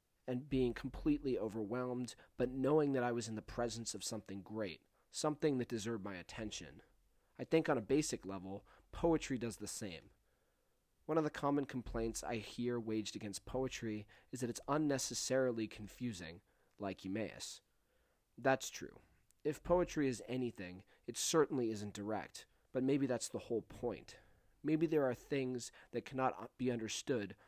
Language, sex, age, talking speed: English, male, 30-49, 155 wpm